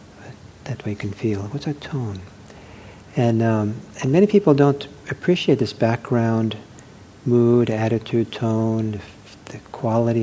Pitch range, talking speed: 105-125 Hz, 135 wpm